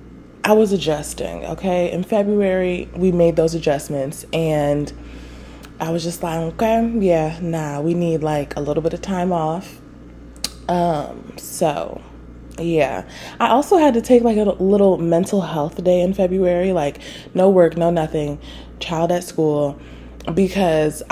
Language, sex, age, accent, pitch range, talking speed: English, female, 20-39, American, 150-205 Hz, 150 wpm